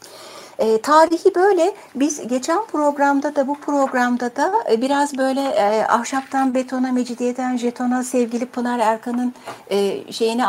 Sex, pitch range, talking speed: female, 215-285 Hz, 130 wpm